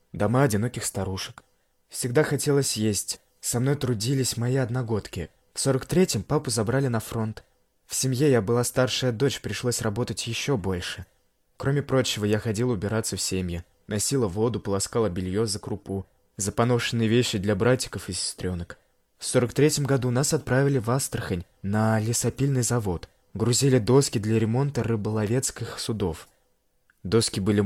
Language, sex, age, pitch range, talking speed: Russian, male, 20-39, 100-130 Hz, 145 wpm